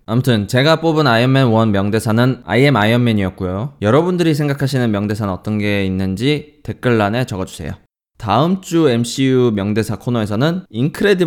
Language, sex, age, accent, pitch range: Korean, male, 20-39, native, 105-145 Hz